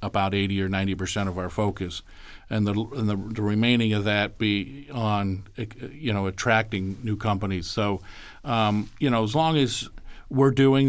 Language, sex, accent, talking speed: English, male, American, 175 wpm